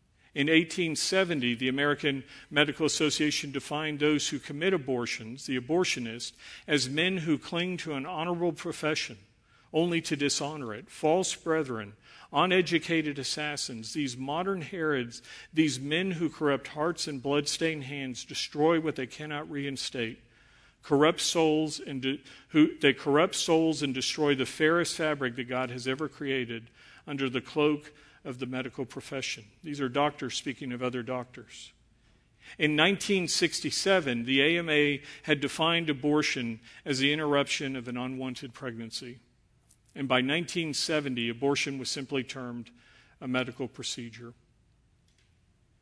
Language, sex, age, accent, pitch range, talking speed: English, male, 50-69, American, 130-155 Hz, 130 wpm